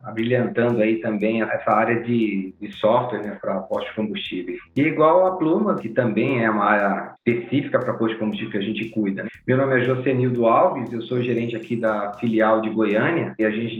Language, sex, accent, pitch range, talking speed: Portuguese, male, Brazilian, 110-130 Hz, 200 wpm